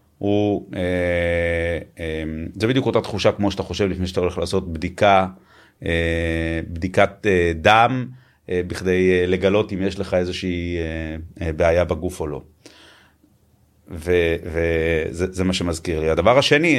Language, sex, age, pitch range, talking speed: Hebrew, male, 30-49, 85-100 Hz, 115 wpm